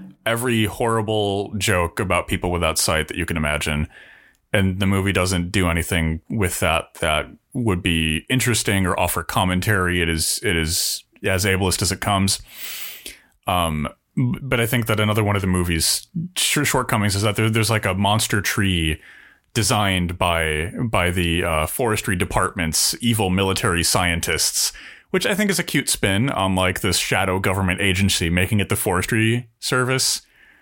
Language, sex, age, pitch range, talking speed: English, male, 30-49, 90-115 Hz, 160 wpm